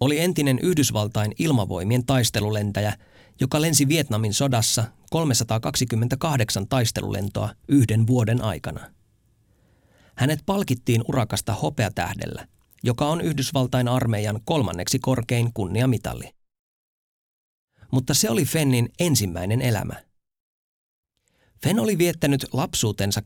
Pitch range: 105-135 Hz